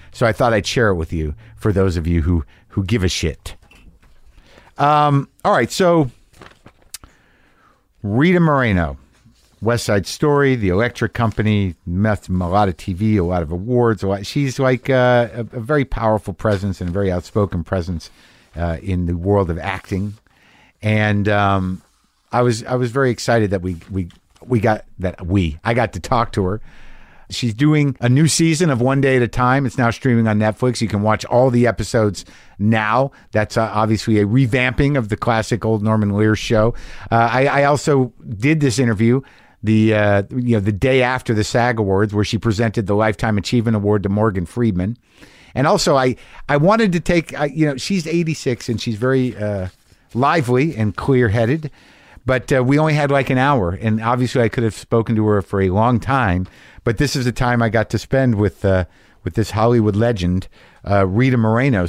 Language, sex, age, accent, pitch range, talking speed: English, male, 50-69, American, 100-125 Hz, 190 wpm